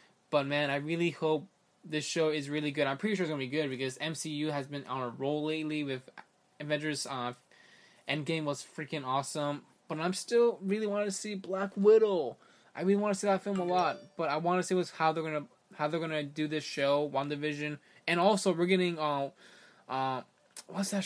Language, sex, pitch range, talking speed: English, male, 140-170 Hz, 210 wpm